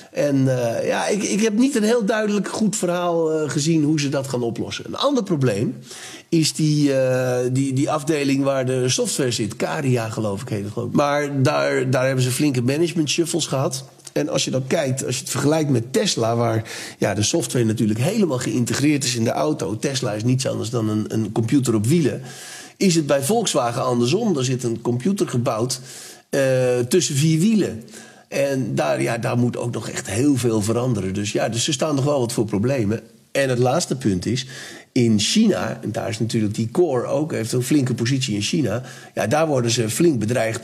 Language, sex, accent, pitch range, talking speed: Dutch, male, Dutch, 115-155 Hz, 205 wpm